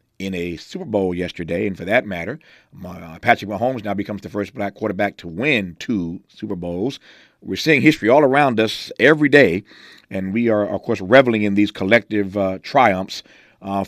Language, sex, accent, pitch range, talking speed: English, male, American, 95-115 Hz, 185 wpm